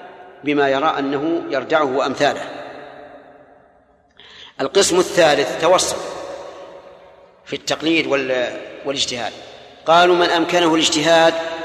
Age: 40-59